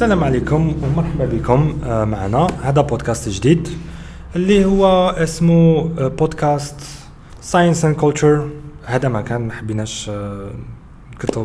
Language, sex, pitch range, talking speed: English, male, 115-155 Hz, 100 wpm